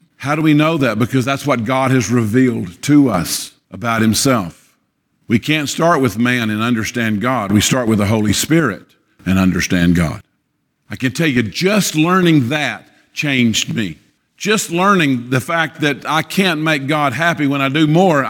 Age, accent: 50-69, American